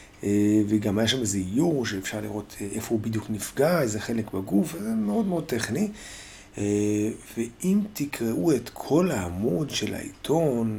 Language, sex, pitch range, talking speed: Hebrew, male, 100-115 Hz, 140 wpm